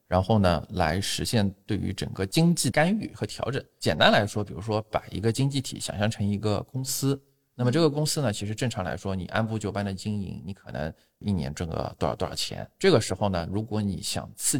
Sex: male